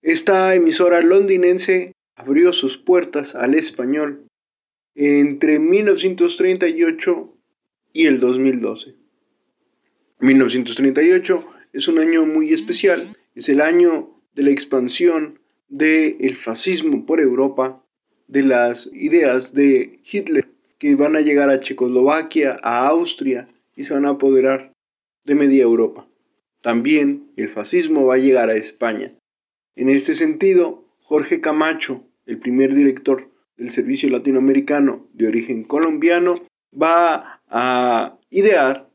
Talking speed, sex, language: 115 wpm, male, Spanish